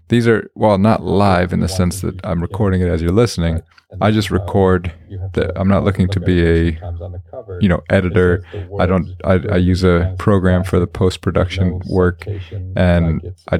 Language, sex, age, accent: English, male, 30-49, American